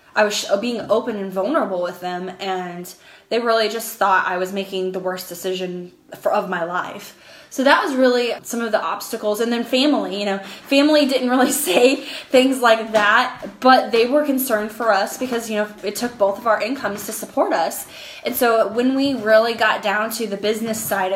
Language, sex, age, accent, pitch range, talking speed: English, female, 10-29, American, 195-235 Hz, 200 wpm